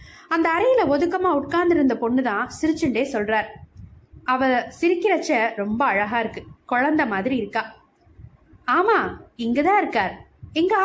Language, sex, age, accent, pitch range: Tamil, female, 20-39, native, 235-330 Hz